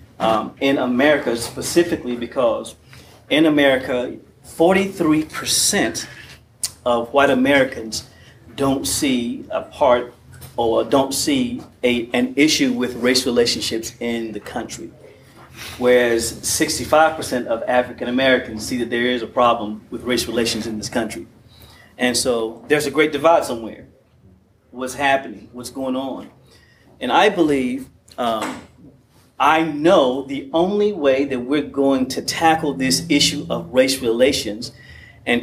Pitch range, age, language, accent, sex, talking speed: 120-155 Hz, 30-49, English, American, male, 125 wpm